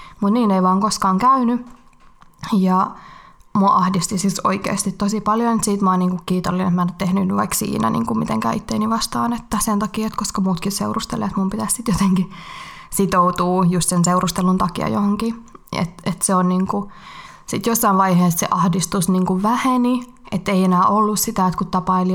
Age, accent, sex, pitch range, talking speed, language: 20-39, native, female, 185-215 Hz, 180 wpm, Finnish